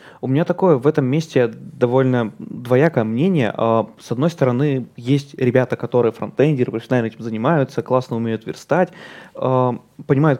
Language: Russian